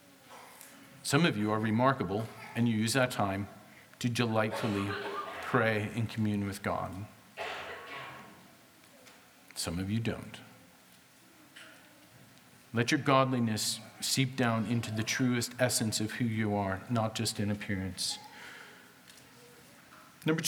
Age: 40-59